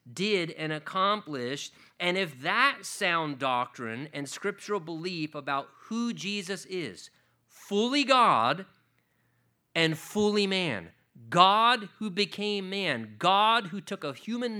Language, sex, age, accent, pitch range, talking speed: English, male, 40-59, American, 145-200 Hz, 120 wpm